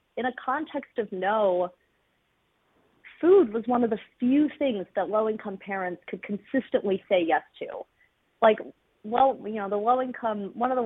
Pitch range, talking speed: 195-250 Hz, 160 wpm